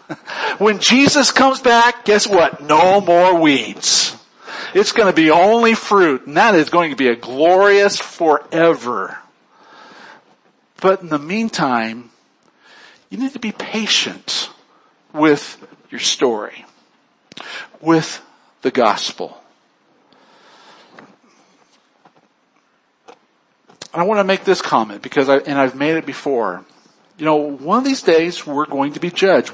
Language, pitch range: English, 150-205 Hz